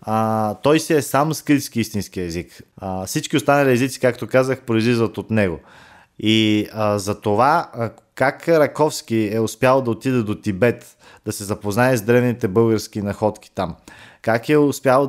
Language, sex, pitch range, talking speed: Bulgarian, male, 100-120 Hz, 160 wpm